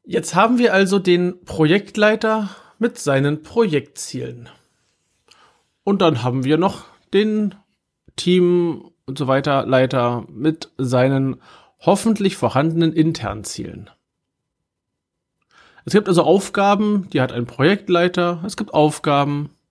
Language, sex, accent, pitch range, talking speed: German, male, German, 130-180 Hz, 115 wpm